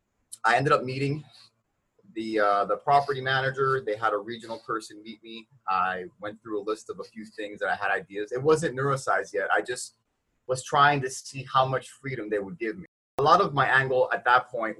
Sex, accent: male, American